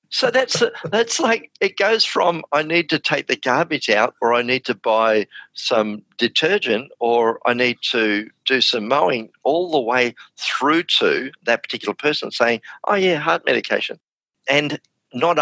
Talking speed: 165 wpm